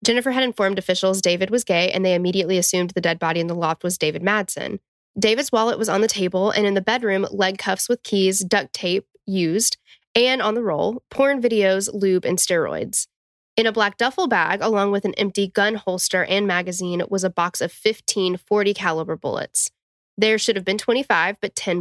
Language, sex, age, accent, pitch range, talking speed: English, female, 10-29, American, 175-205 Hz, 205 wpm